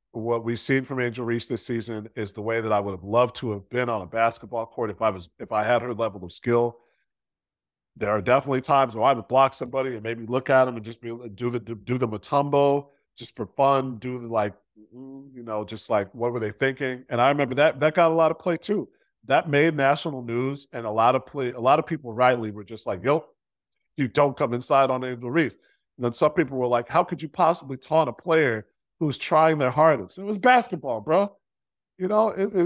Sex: male